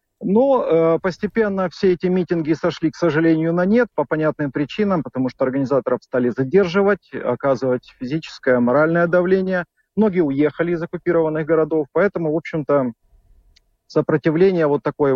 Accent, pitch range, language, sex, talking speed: native, 125-165 Hz, Russian, male, 135 wpm